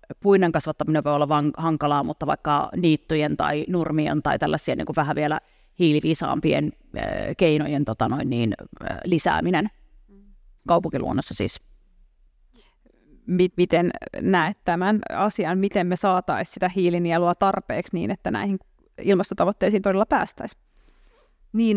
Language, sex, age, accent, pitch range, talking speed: Finnish, female, 30-49, native, 145-175 Hz, 120 wpm